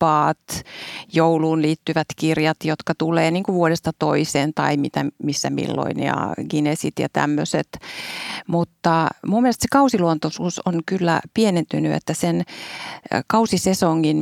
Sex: female